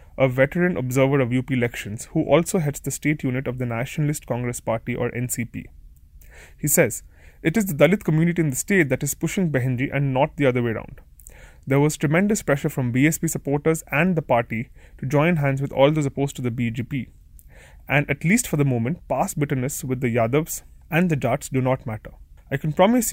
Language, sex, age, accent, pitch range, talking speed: English, male, 20-39, Indian, 125-155 Hz, 205 wpm